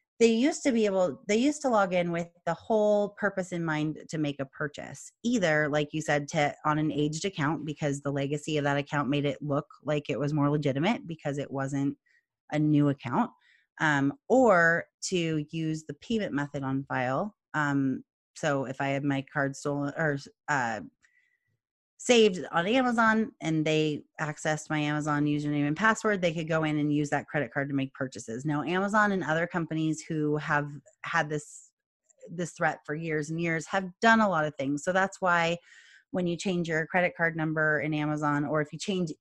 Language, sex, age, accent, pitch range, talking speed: English, female, 30-49, American, 145-180 Hz, 195 wpm